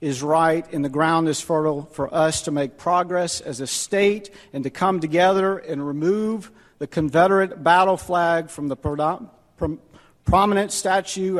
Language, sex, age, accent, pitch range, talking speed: English, male, 50-69, American, 150-200 Hz, 155 wpm